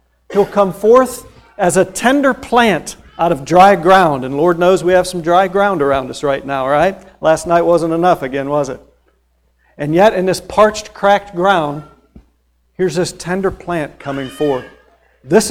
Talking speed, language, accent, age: 175 wpm, English, American, 50-69